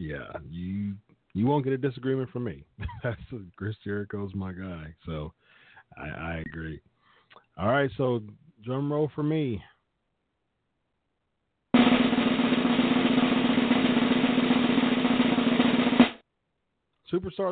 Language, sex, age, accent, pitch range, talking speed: English, male, 40-59, American, 95-145 Hz, 85 wpm